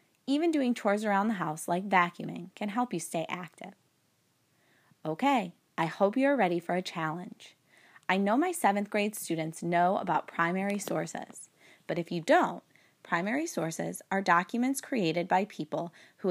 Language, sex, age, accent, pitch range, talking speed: English, female, 20-39, American, 175-235 Hz, 160 wpm